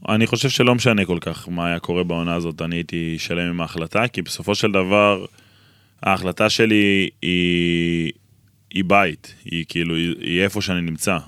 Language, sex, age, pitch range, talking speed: Hebrew, male, 20-39, 90-105 Hz, 140 wpm